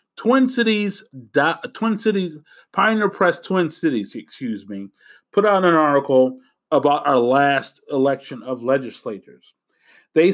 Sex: male